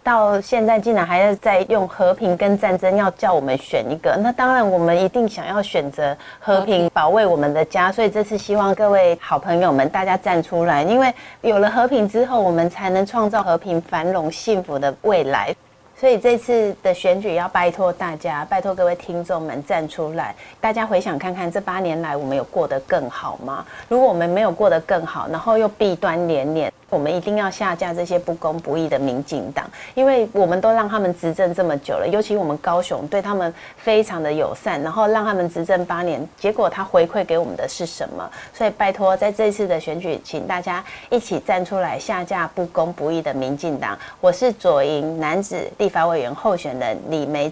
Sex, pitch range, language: female, 170-210 Hz, Chinese